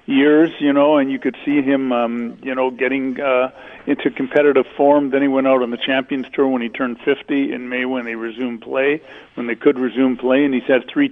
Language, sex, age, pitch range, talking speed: English, male, 50-69, 125-140 Hz, 230 wpm